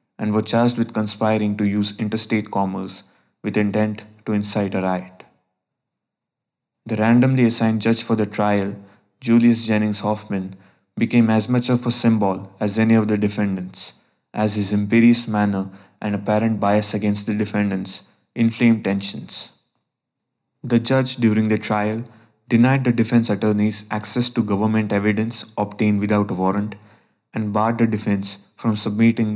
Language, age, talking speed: English, 20-39, 145 wpm